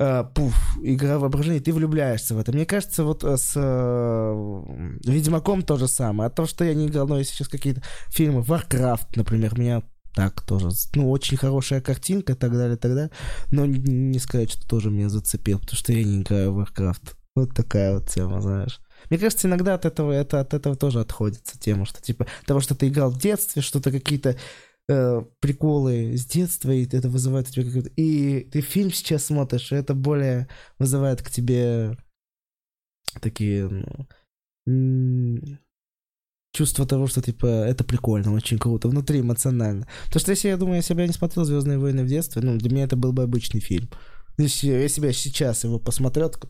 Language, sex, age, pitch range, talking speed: Russian, male, 20-39, 115-145 Hz, 190 wpm